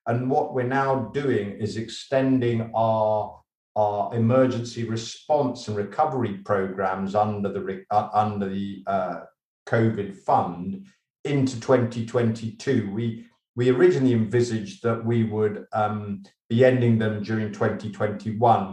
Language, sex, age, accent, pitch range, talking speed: English, male, 50-69, British, 100-120 Hz, 120 wpm